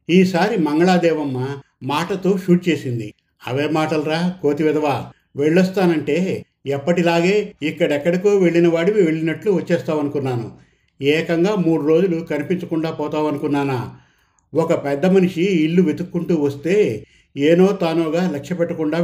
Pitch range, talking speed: 145-175 Hz, 100 wpm